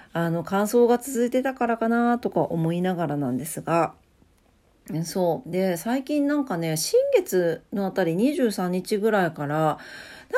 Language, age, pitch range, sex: Japanese, 40-59, 170-265 Hz, female